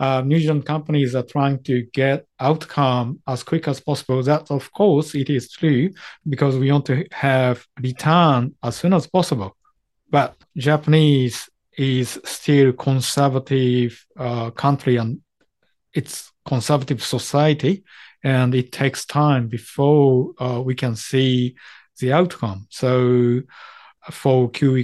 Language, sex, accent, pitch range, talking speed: English, male, Japanese, 120-140 Hz, 135 wpm